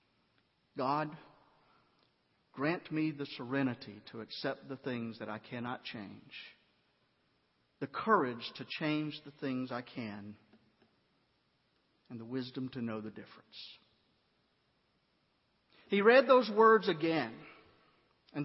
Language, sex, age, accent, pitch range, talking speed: English, male, 50-69, American, 135-220 Hz, 110 wpm